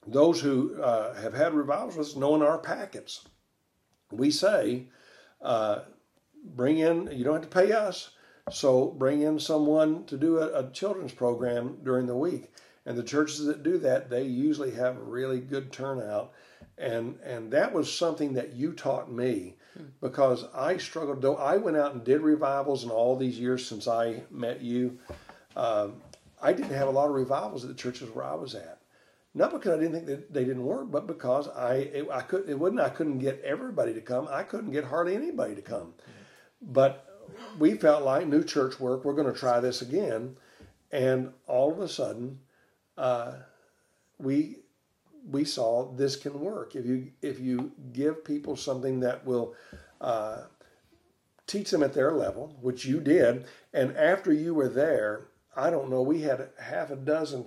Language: English